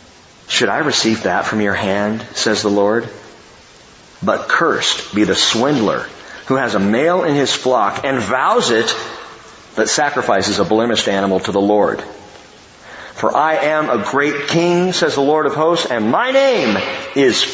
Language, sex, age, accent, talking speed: English, male, 40-59, American, 165 wpm